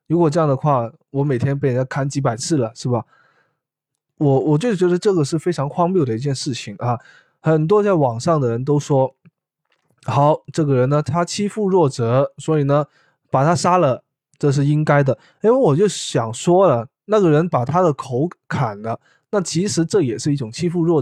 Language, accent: Chinese, native